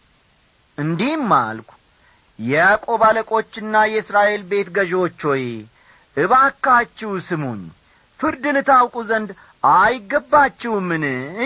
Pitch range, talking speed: 135-210 Hz, 105 wpm